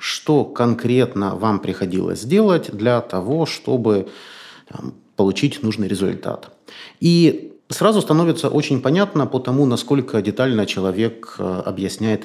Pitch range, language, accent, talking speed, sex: 105-135 Hz, Russian, native, 110 wpm, male